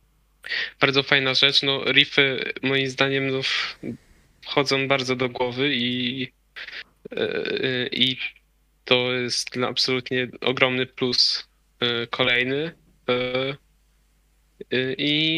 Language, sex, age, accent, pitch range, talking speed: Polish, male, 10-29, native, 130-145 Hz, 80 wpm